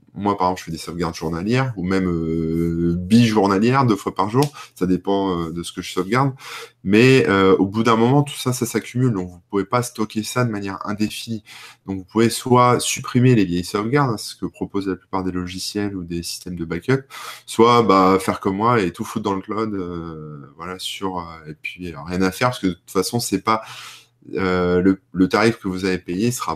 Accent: French